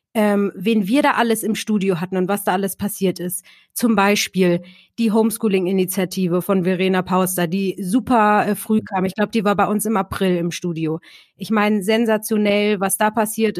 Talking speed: 185 wpm